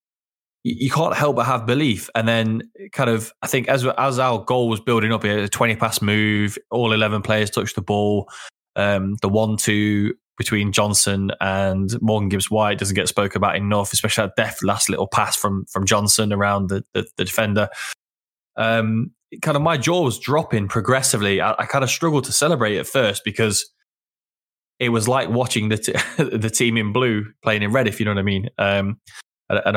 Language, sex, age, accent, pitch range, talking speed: English, male, 20-39, British, 100-125 Hz, 195 wpm